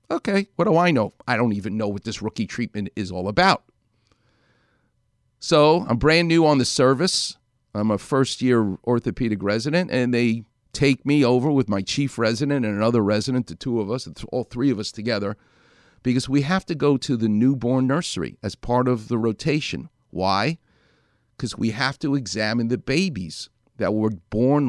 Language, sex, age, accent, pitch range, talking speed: English, male, 50-69, American, 110-140 Hz, 180 wpm